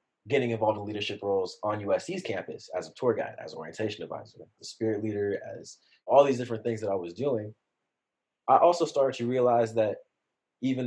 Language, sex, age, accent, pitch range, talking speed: English, male, 20-39, American, 90-115 Hz, 195 wpm